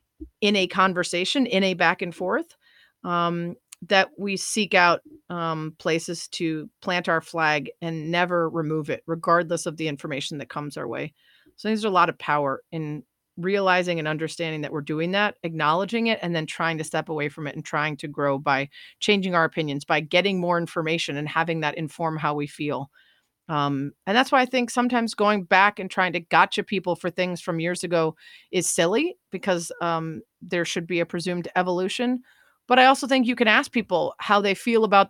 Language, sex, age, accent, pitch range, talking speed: English, female, 30-49, American, 155-190 Hz, 195 wpm